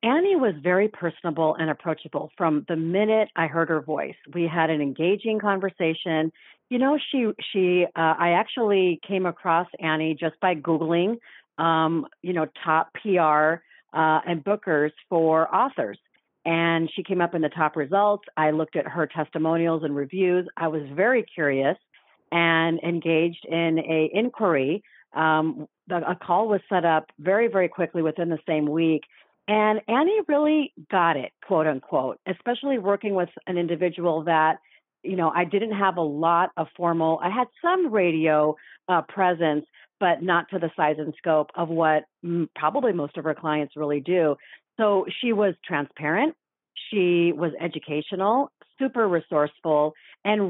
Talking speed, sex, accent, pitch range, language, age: 155 wpm, female, American, 160-195 Hz, English, 50-69